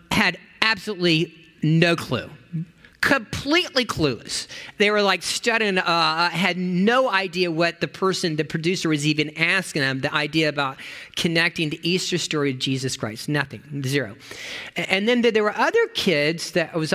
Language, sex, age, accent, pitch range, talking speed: English, male, 40-59, American, 145-190 Hz, 150 wpm